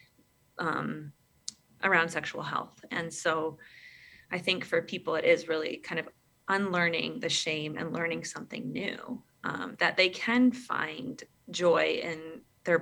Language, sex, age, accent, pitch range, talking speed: English, female, 20-39, American, 165-205 Hz, 140 wpm